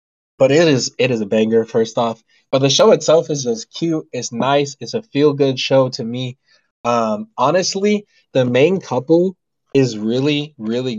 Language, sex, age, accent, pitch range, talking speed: English, male, 20-39, American, 110-145 Hz, 175 wpm